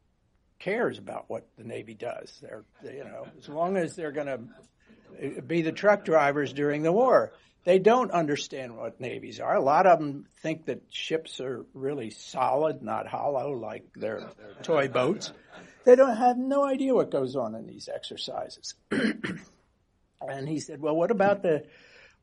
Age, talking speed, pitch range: 60-79, 165 wpm, 130-170 Hz